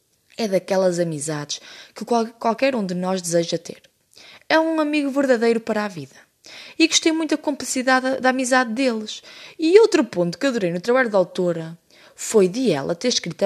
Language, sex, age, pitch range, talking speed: Portuguese, female, 20-39, 180-270 Hz, 175 wpm